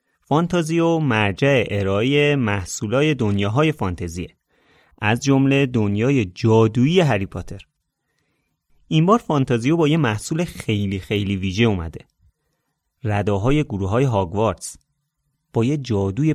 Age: 30-49